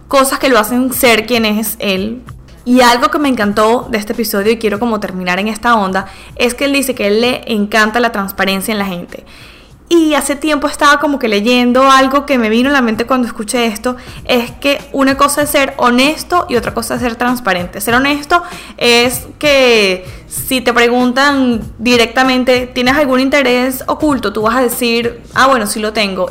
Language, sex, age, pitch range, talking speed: English, female, 10-29, 220-265 Hz, 200 wpm